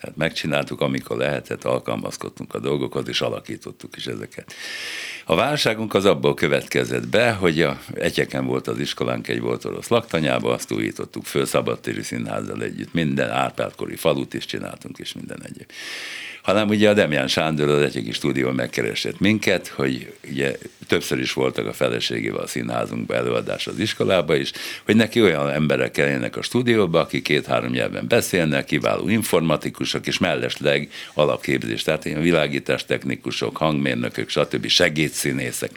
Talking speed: 145 wpm